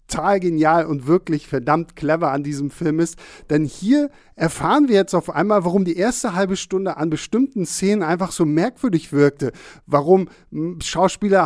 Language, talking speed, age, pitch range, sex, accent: German, 160 wpm, 50-69, 150-190 Hz, male, German